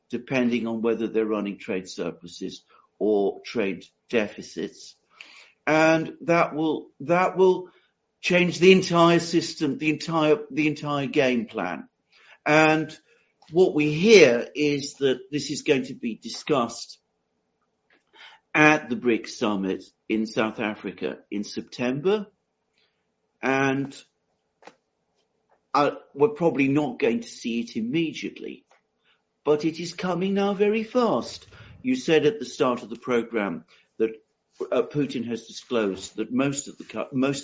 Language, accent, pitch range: English, British, 110-160 Hz